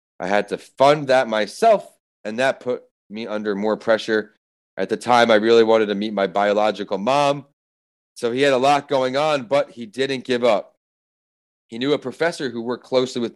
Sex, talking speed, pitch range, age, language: male, 200 wpm, 100-120 Hz, 30-49, English